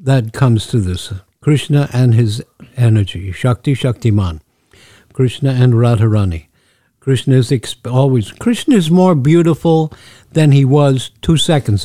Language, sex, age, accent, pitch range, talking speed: English, male, 60-79, American, 115-140 Hz, 135 wpm